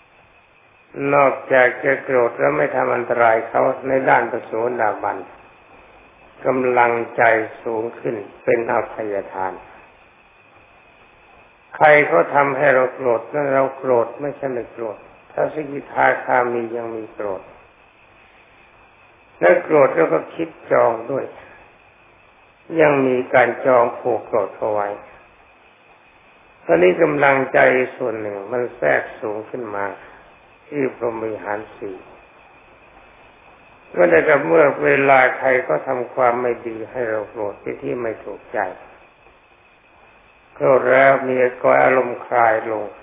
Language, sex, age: Thai, male, 60-79